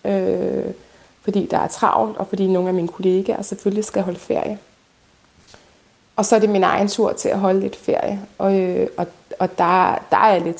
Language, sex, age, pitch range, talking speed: Danish, female, 20-39, 185-205 Hz, 205 wpm